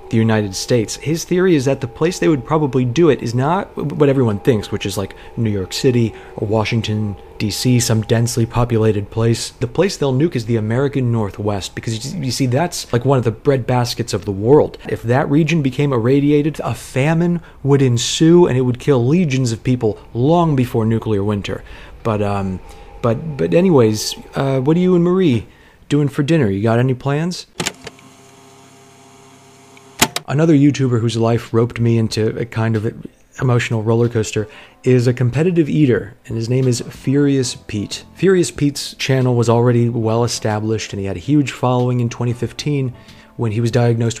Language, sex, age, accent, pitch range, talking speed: English, male, 30-49, American, 110-135 Hz, 180 wpm